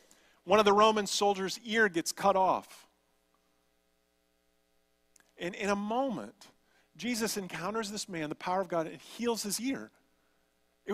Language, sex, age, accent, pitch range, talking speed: English, male, 40-59, American, 140-225 Hz, 145 wpm